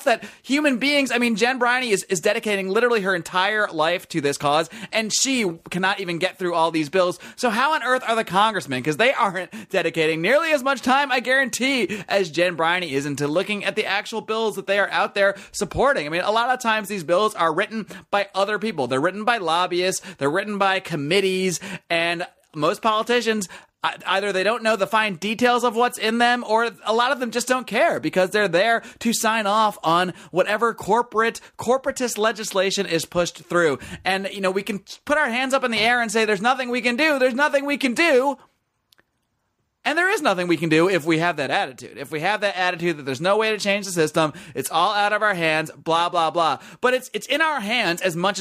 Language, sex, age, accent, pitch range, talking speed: English, male, 30-49, American, 175-235 Hz, 225 wpm